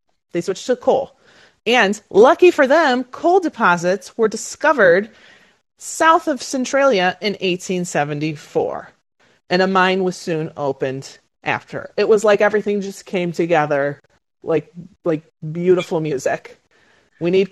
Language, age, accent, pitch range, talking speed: English, 30-49, American, 160-205 Hz, 125 wpm